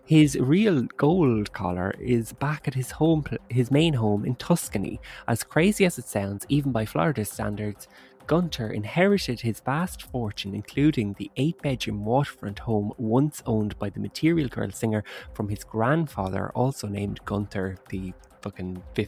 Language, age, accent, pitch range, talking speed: English, 20-39, Irish, 105-135 Hz, 155 wpm